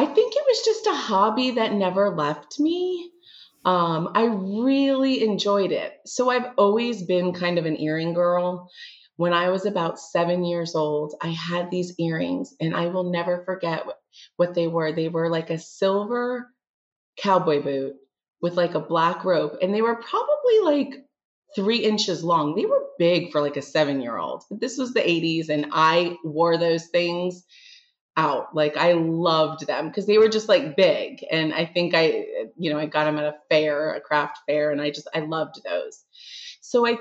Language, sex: English, female